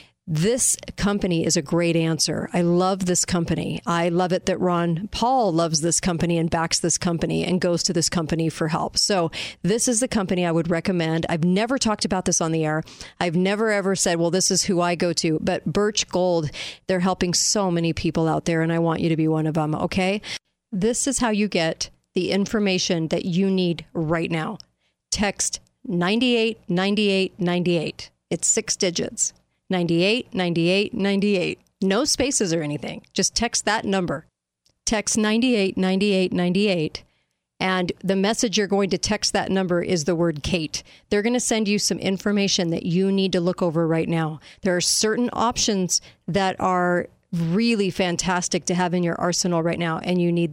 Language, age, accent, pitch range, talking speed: English, 40-59, American, 170-200 Hz, 185 wpm